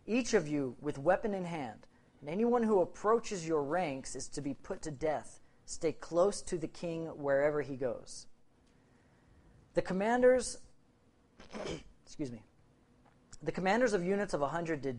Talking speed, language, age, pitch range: 155 wpm, English, 40-59, 135-170 Hz